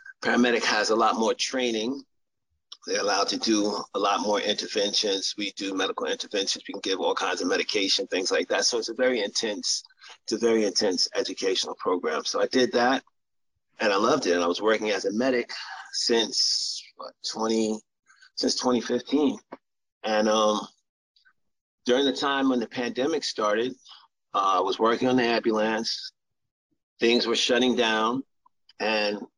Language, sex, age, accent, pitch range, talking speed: English, male, 30-49, American, 110-135 Hz, 160 wpm